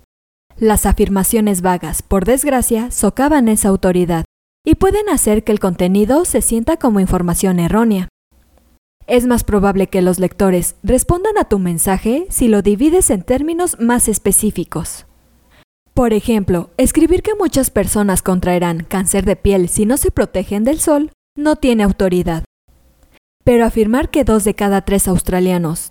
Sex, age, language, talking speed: female, 20-39, Spanish, 145 wpm